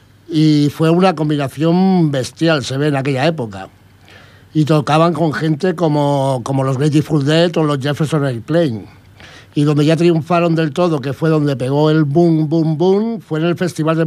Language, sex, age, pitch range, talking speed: Spanish, male, 60-79, 140-175 Hz, 180 wpm